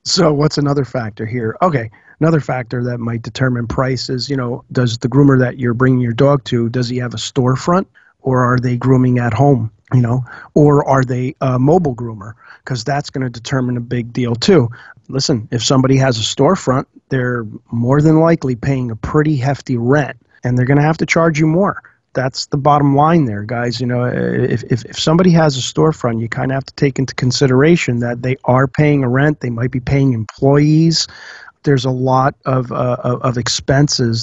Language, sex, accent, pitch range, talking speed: English, male, American, 125-150 Hz, 205 wpm